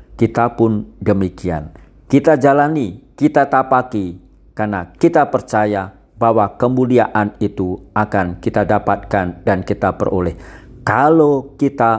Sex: male